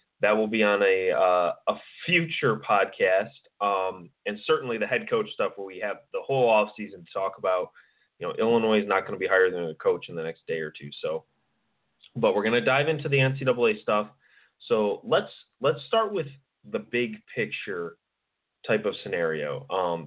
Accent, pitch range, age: American, 110-155 Hz, 30-49